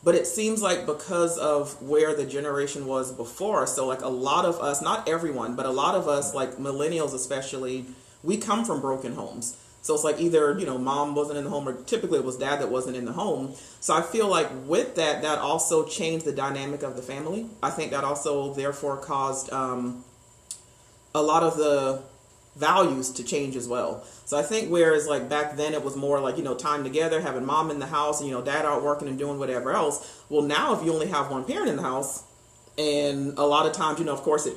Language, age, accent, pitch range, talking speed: English, 40-59, American, 135-165 Hz, 235 wpm